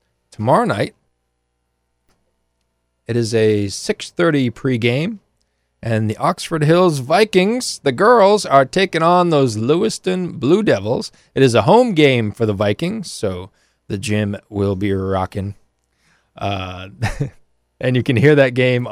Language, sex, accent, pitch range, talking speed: English, male, American, 100-135 Hz, 135 wpm